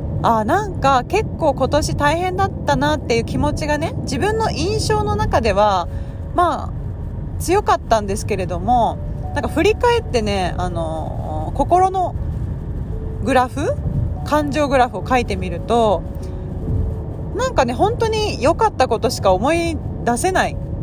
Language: Japanese